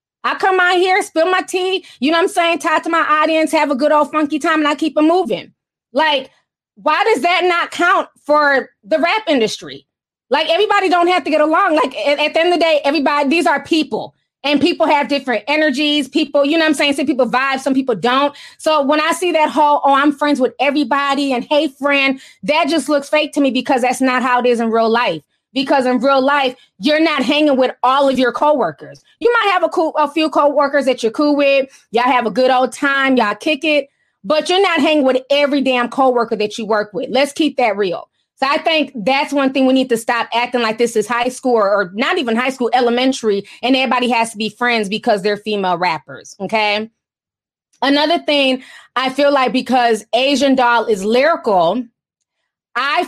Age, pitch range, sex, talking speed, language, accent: 20-39, 245-310 Hz, female, 220 wpm, English, American